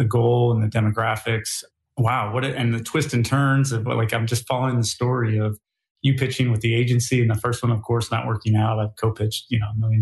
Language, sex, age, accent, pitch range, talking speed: English, male, 30-49, American, 110-135 Hz, 245 wpm